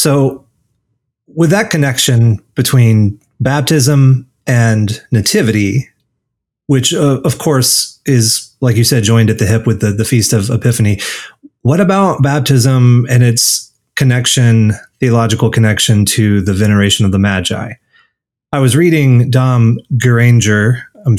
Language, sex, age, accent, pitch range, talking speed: English, male, 30-49, American, 110-130 Hz, 130 wpm